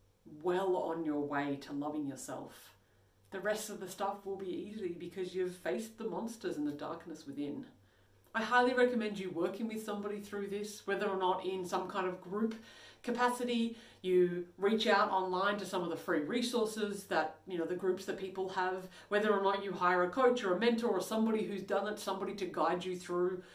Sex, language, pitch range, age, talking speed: female, English, 170-220 Hz, 40-59, 205 wpm